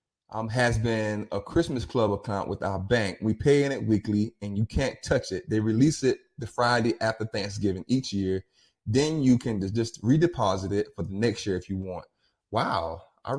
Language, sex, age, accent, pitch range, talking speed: English, male, 20-39, American, 95-125 Hz, 195 wpm